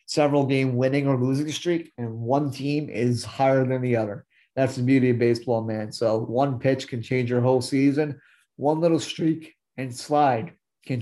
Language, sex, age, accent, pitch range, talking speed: English, male, 30-49, American, 125-145 Hz, 185 wpm